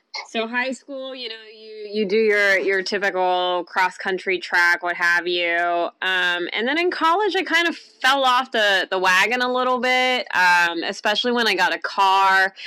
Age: 20-39